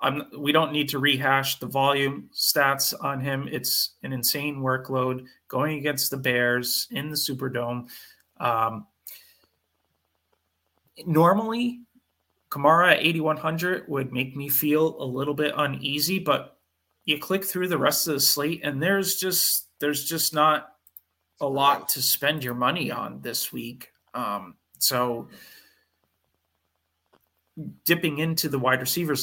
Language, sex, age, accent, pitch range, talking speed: English, male, 30-49, American, 130-155 Hz, 135 wpm